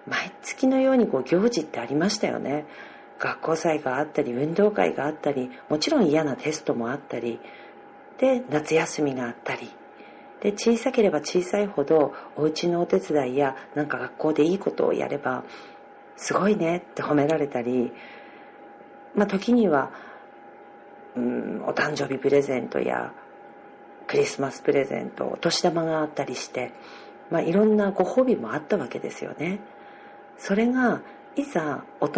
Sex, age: female, 40-59